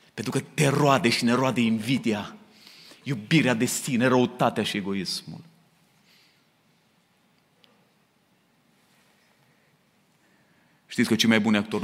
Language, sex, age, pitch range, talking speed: Romanian, male, 30-49, 105-140 Hz, 100 wpm